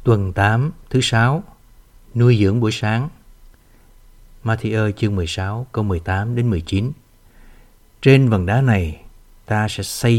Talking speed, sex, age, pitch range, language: 140 wpm, male, 60-79, 95-125 Hz, Vietnamese